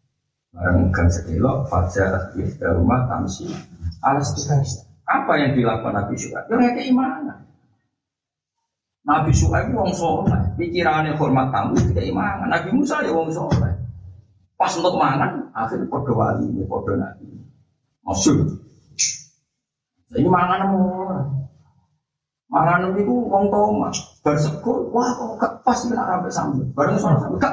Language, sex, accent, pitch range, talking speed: Indonesian, male, native, 125-175 Hz, 75 wpm